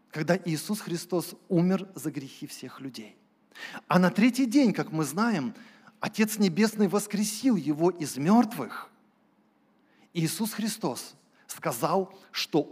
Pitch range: 175-240 Hz